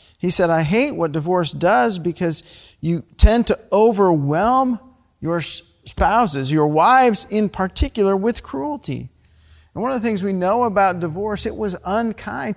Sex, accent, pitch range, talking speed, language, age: male, American, 140-210 Hz, 155 wpm, English, 50-69